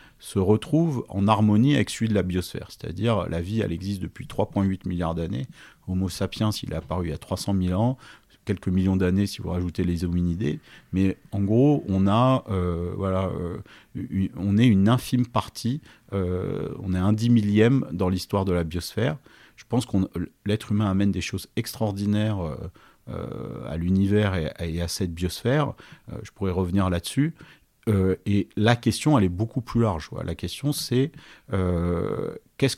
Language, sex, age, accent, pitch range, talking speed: French, male, 40-59, French, 90-115 Hz, 175 wpm